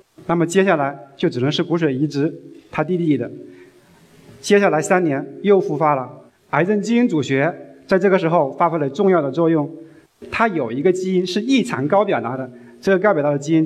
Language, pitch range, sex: Chinese, 135-190 Hz, male